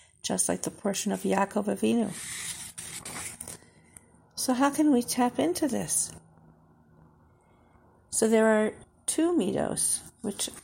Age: 50-69